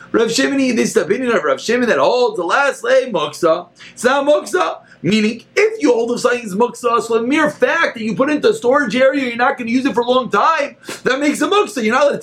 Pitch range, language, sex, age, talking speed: 190-280 Hz, English, male, 30-49, 270 wpm